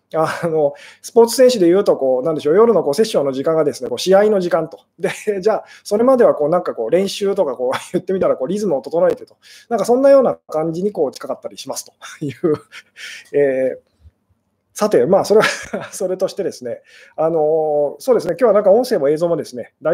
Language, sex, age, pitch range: Japanese, male, 20-39, 150-210 Hz